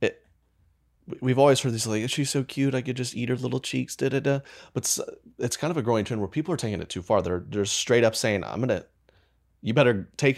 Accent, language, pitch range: American, English, 80-125 Hz